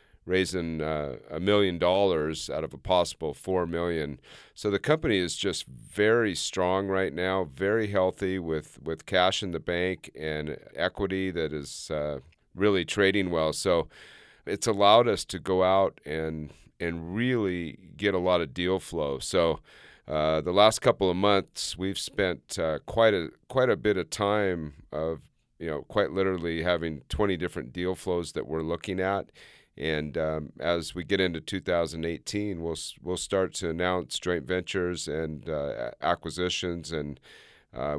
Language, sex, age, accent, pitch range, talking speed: English, male, 40-59, American, 80-95 Hz, 160 wpm